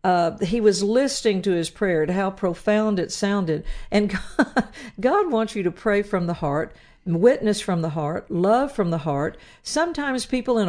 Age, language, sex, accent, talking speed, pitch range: 50-69, English, female, American, 185 wpm, 175-225 Hz